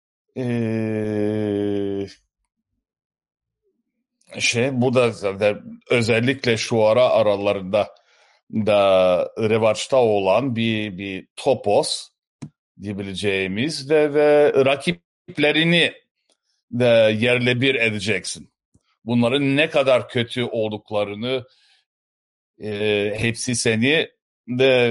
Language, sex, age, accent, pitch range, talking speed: Turkish, male, 60-79, native, 110-150 Hz, 75 wpm